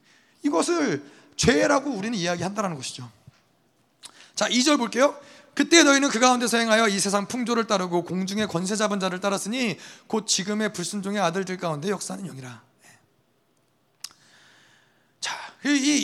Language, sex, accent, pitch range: Korean, male, native, 205-265 Hz